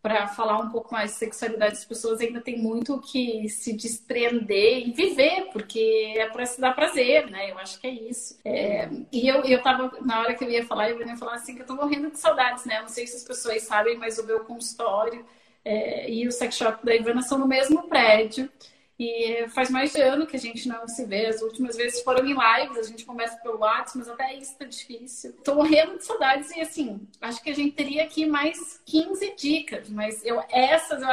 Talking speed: 225 wpm